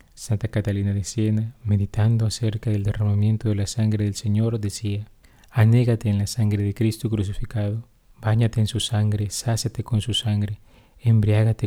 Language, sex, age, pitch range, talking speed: Spanish, male, 30-49, 105-115 Hz, 155 wpm